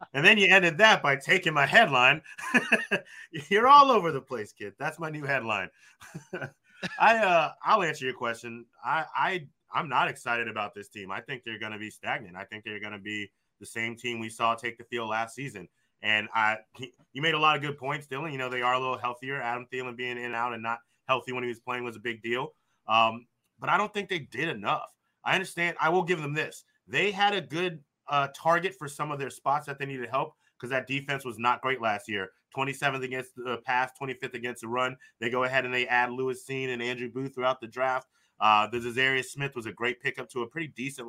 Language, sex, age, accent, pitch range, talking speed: English, male, 30-49, American, 115-140 Hz, 240 wpm